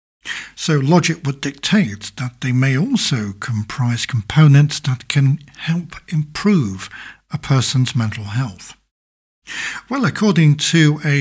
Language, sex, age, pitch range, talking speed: English, male, 60-79, 120-155 Hz, 120 wpm